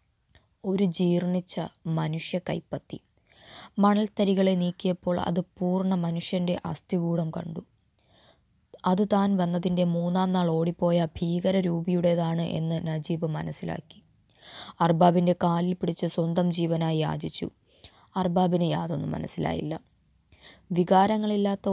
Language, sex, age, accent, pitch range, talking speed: Malayalam, female, 20-39, native, 165-190 Hz, 85 wpm